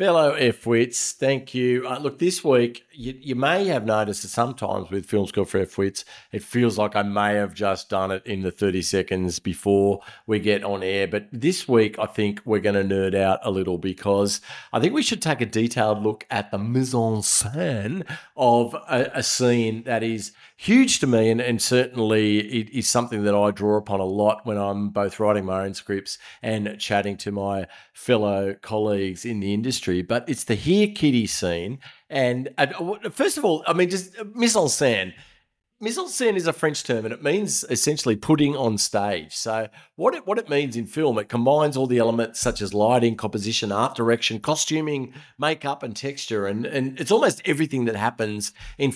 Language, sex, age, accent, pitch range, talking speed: English, male, 40-59, Australian, 100-130 Hz, 200 wpm